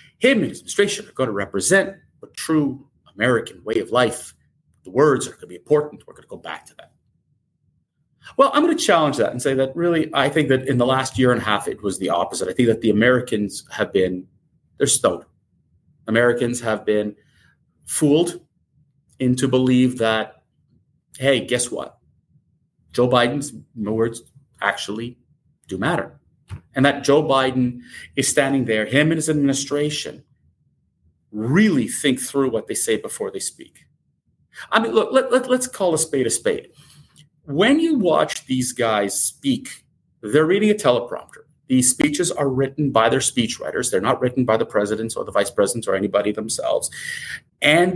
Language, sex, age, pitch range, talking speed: English, male, 30-49, 120-170 Hz, 170 wpm